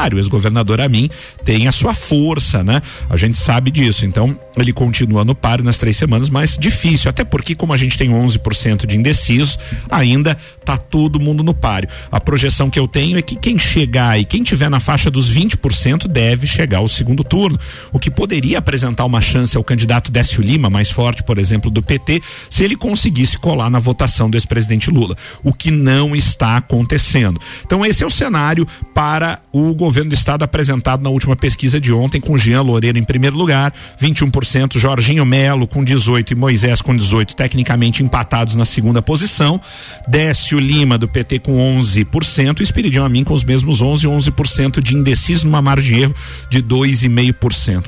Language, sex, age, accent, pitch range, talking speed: Portuguese, male, 50-69, Brazilian, 115-145 Hz, 180 wpm